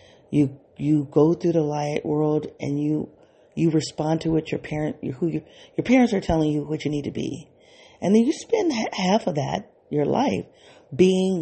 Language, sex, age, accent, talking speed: English, female, 40-59, American, 195 wpm